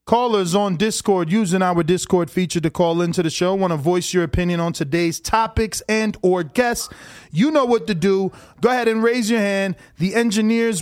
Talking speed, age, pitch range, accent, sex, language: 200 wpm, 20-39, 165-225 Hz, American, male, English